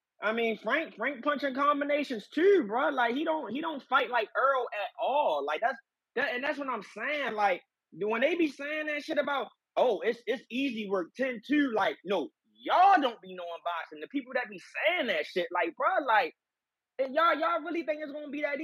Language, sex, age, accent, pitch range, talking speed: English, male, 20-39, American, 230-305 Hz, 215 wpm